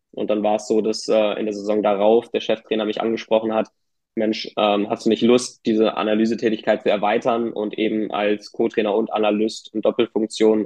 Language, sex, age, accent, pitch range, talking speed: German, male, 20-39, German, 105-115 Hz, 190 wpm